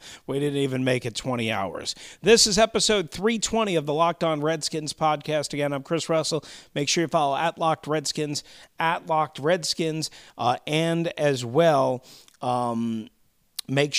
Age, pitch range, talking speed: 40-59, 135-170 Hz, 160 wpm